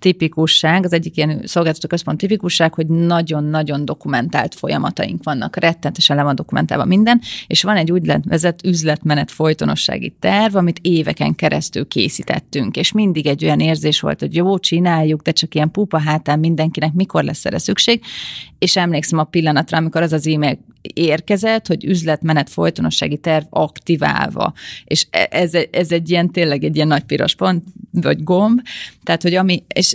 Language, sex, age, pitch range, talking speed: Hungarian, female, 30-49, 150-170 Hz, 160 wpm